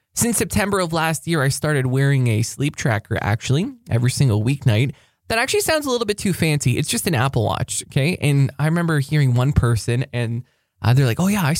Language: English